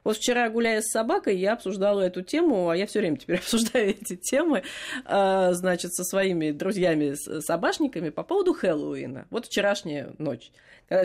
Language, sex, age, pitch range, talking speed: Russian, female, 30-49, 165-260 Hz, 150 wpm